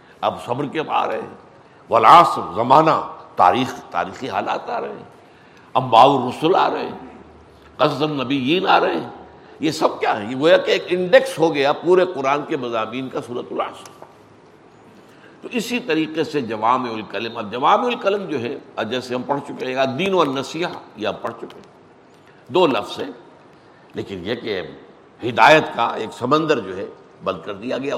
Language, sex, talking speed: Urdu, male, 150 wpm